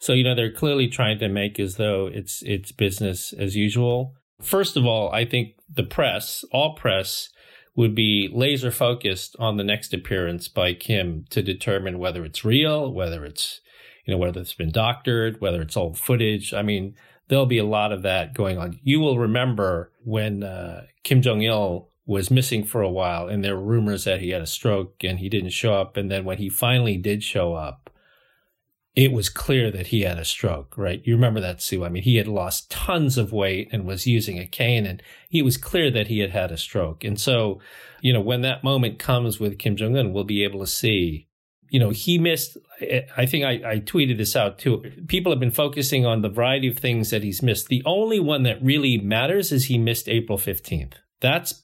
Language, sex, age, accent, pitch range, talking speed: English, male, 40-59, American, 95-125 Hz, 215 wpm